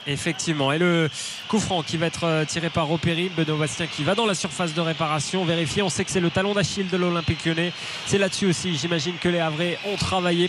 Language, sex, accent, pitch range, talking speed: French, male, French, 160-185 Hz, 230 wpm